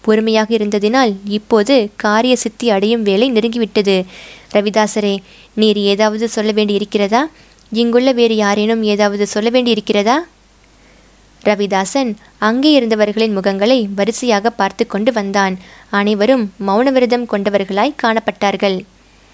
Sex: female